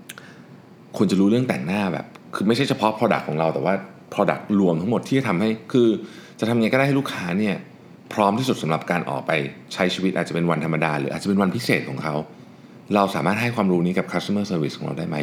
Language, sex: Thai, male